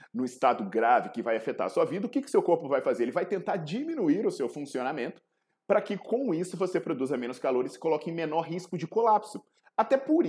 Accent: Brazilian